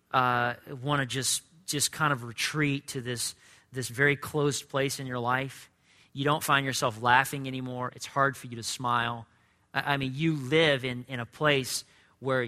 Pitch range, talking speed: 105-130 Hz, 190 wpm